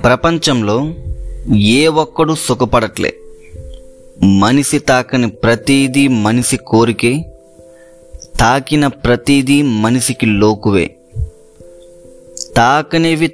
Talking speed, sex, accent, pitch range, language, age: 65 wpm, male, native, 105-140 Hz, Telugu, 20-39